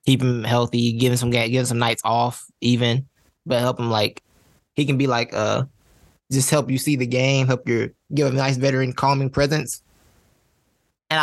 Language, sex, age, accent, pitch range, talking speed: English, male, 20-39, American, 115-145 Hz, 185 wpm